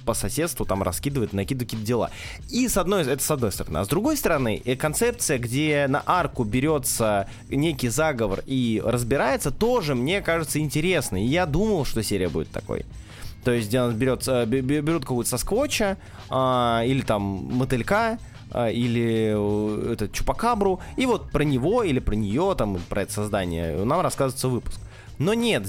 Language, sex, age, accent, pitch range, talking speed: Russian, male, 20-39, native, 110-165 Hz, 165 wpm